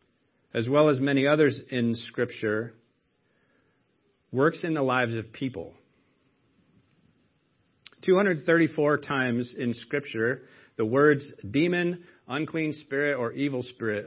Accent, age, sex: American, 40-59, male